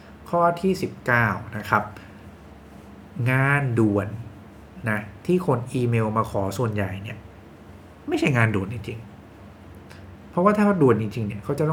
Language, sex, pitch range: English, male, 100-125 Hz